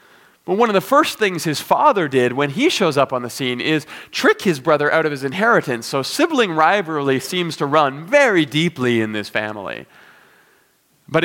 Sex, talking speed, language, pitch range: male, 190 wpm, English, 115-150 Hz